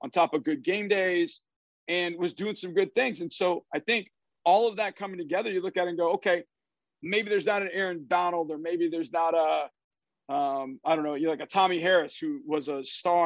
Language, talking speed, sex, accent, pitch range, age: English, 235 wpm, male, American, 165-200 Hz, 50-69